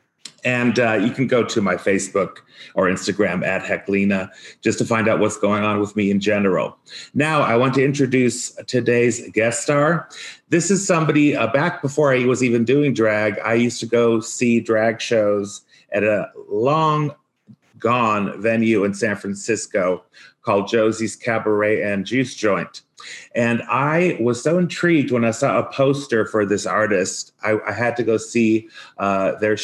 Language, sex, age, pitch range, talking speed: English, male, 30-49, 110-135 Hz, 170 wpm